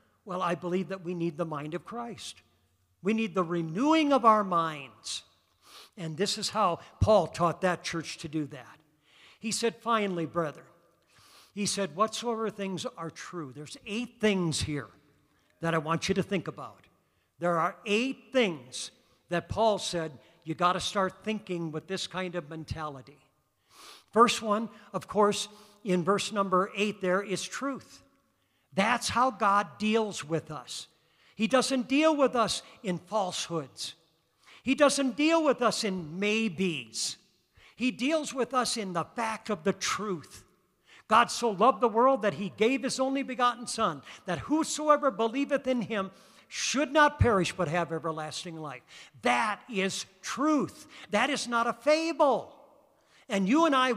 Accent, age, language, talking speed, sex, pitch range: American, 50-69, English, 160 wpm, male, 170-235 Hz